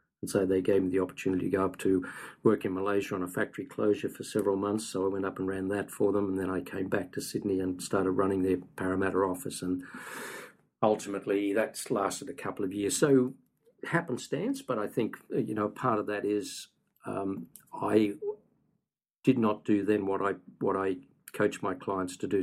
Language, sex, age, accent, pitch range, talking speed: English, male, 50-69, Australian, 95-105 Hz, 205 wpm